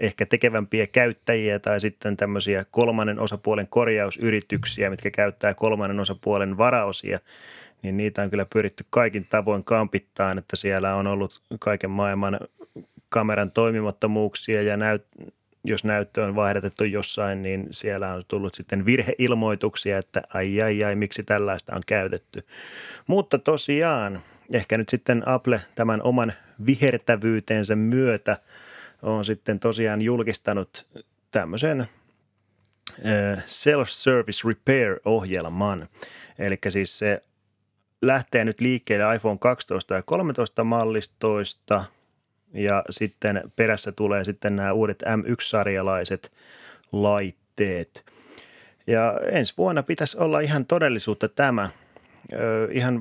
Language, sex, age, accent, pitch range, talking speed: Finnish, male, 20-39, native, 100-115 Hz, 110 wpm